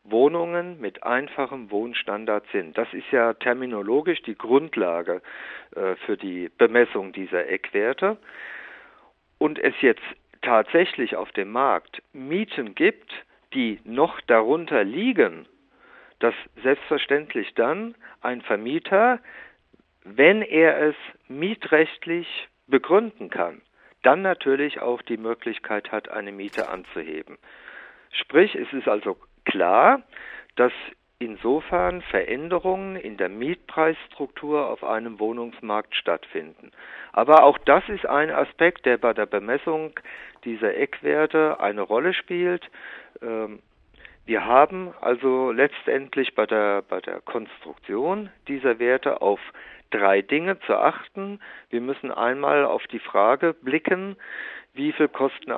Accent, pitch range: German, 115-180 Hz